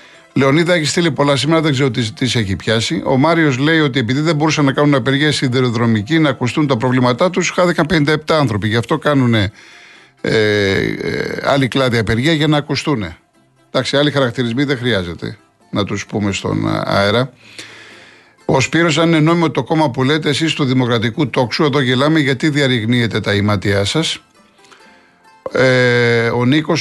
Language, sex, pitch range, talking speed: Greek, male, 115-145 Hz, 170 wpm